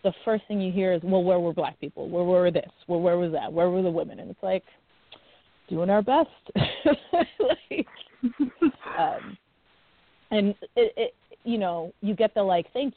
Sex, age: female, 30-49